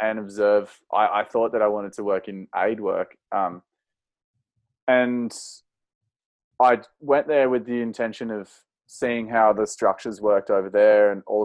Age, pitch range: 20-39, 105-120 Hz